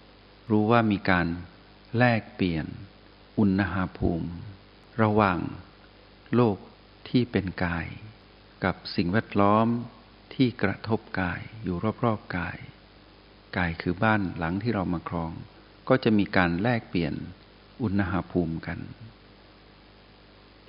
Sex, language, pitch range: male, Thai, 95-110 Hz